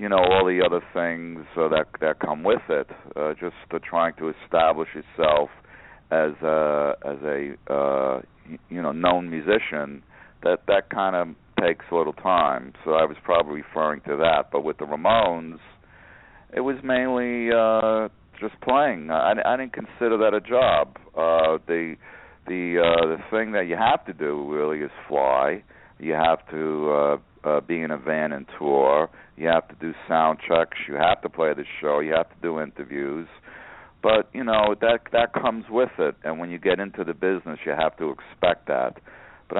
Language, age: English, 60-79